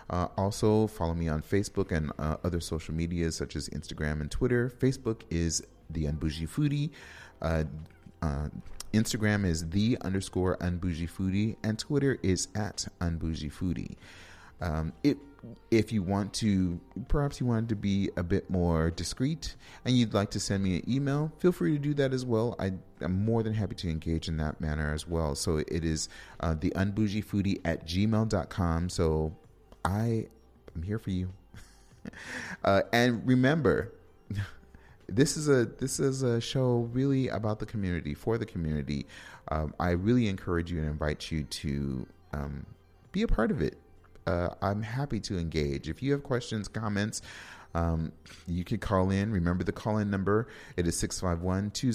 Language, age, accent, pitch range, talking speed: English, 30-49, American, 85-110 Hz, 170 wpm